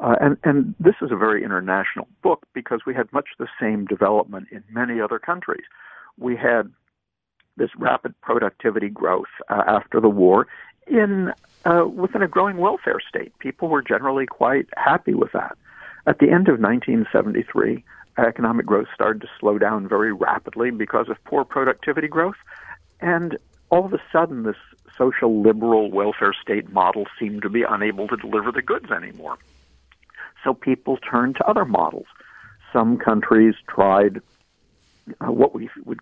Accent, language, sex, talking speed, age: American, English, male, 160 wpm, 60-79